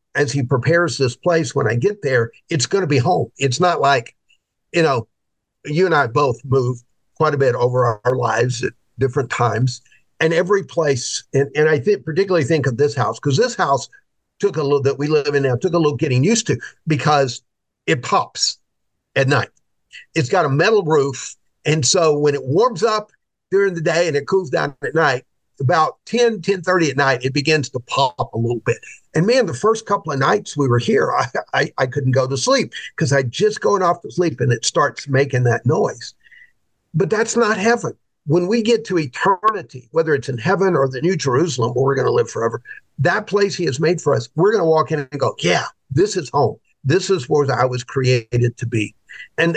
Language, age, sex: English, 50-69, male